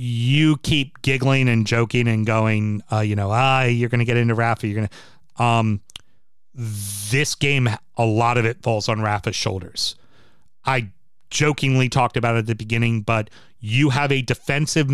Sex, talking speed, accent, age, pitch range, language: male, 175 wpm, American, 30-49, 110-135 Hz, English